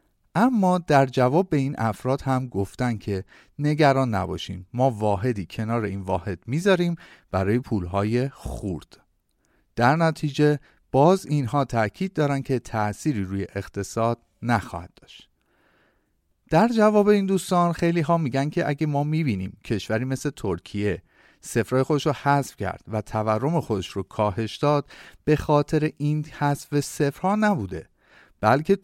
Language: Persian